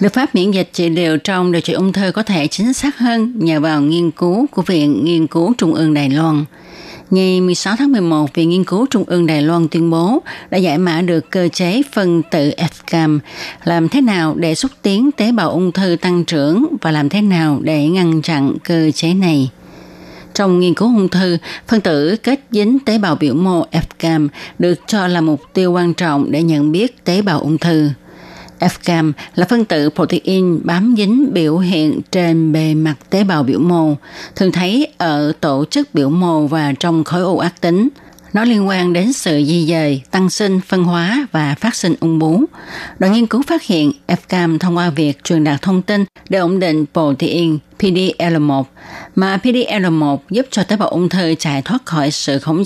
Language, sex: Vietnamese, female